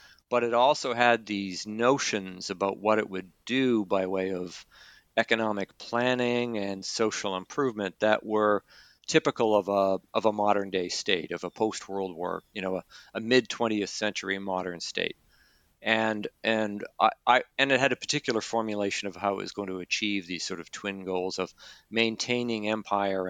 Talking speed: 170 wpm